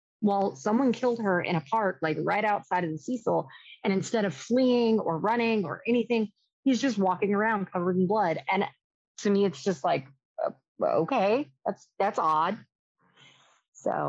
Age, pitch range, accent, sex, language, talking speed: 30-49, 165-225 Hz, American, female, English, 165 wpm